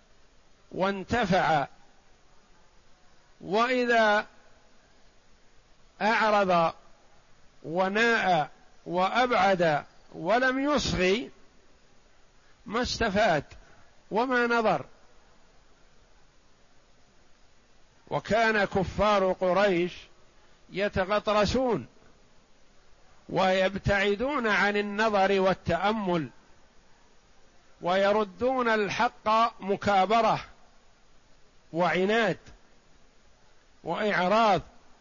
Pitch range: 180-220 Hz